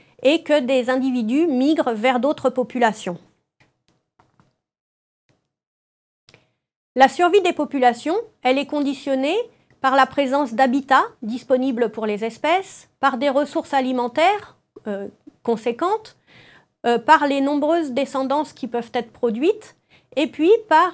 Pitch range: 245-315 Hz